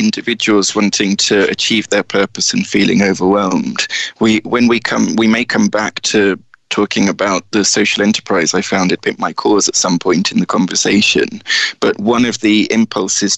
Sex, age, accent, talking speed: male, 20-39, British, 180 wpm